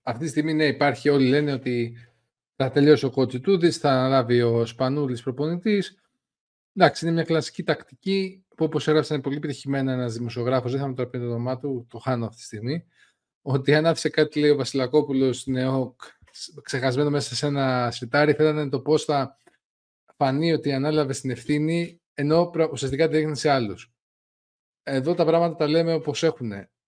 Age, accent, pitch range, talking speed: 20-39, native, 125-155 Hz, 165 wpm